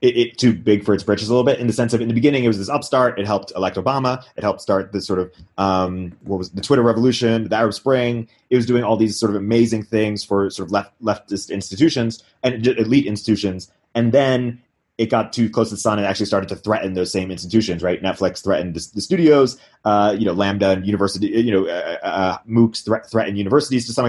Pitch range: 95-115 Hz